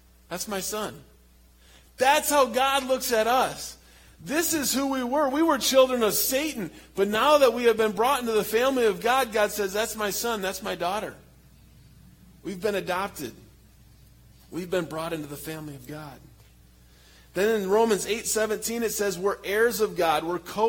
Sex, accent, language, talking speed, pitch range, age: male, American, English, 185 wpm, 185-235 Hz, 40-59